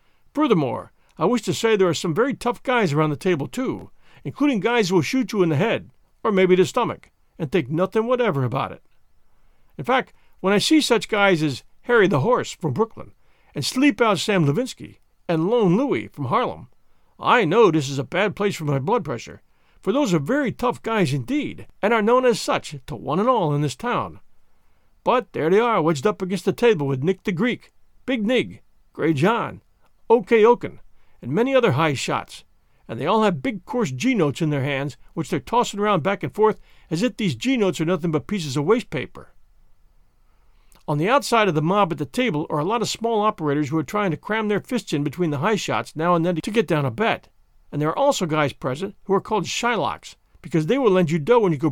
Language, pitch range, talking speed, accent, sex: English, 160-235 Hz, 225 wpm, American, male